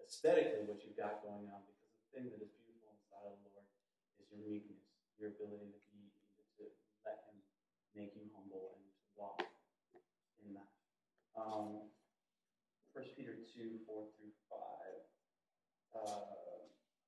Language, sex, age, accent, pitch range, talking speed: English, male, 30-49, American, 105-130 Hz, 150 wpm